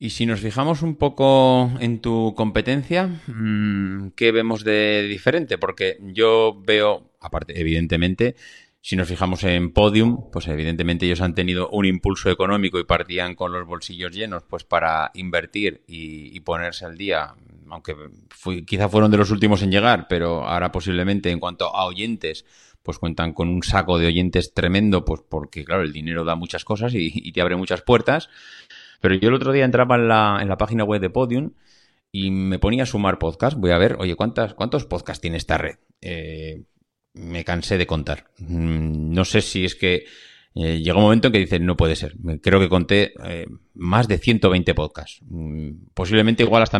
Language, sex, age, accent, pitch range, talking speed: Spanish, male, 30-49, Spanish, 85-110 Hz, 185 wpm